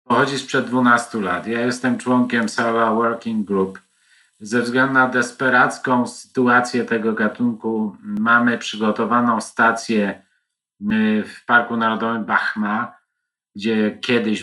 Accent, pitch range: native, 105-125 Hz